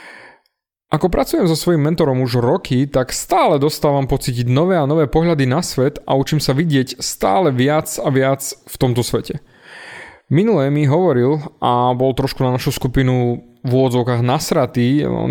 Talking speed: 160 wpm